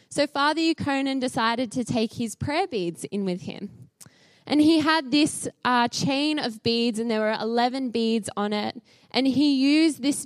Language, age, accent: English, 10-29, Australian